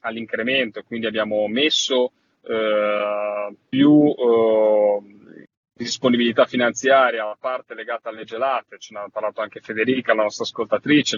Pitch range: 110-130 Hz